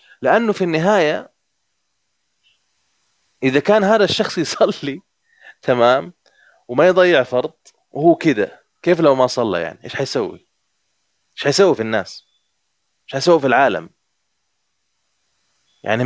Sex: male